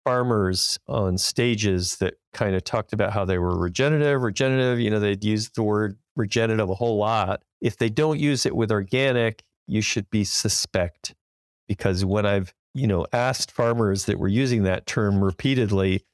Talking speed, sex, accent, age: 175 wpm, male, American, 40-59